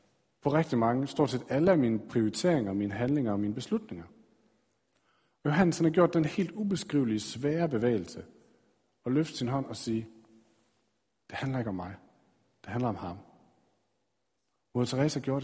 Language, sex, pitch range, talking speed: Danish, male, 110-150 Hz, 155 wpm